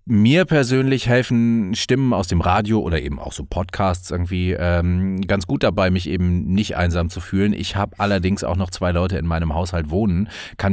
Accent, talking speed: German, 195 wpm